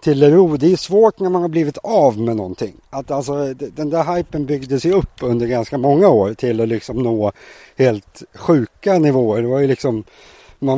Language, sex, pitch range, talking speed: English, male, 110-140 Hz, 195 wpm